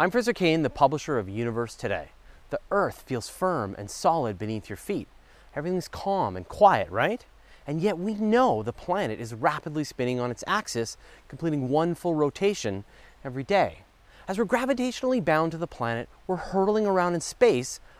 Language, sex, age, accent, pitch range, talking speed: English, male, 30-49, American, 120-190 Hz, 175 wpm